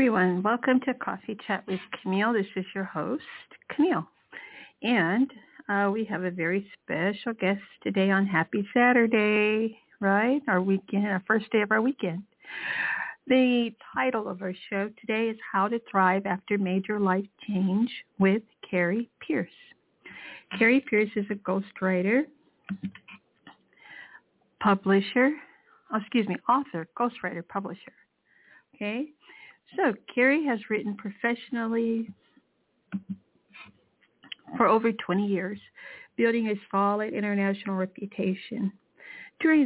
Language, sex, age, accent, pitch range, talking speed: English, female, 60-79, American, 195-235 Hz, 115 wpm